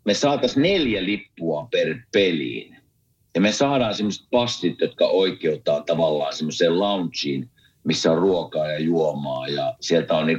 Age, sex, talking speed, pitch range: 50-69, male, 145 wpm, 85-125 Hz